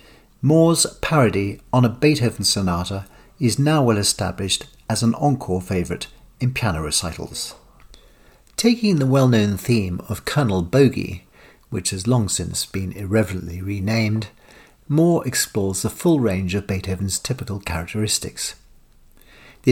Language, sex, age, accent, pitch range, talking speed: English, male, 50-69, British, 95-130 Hz, 125 wpm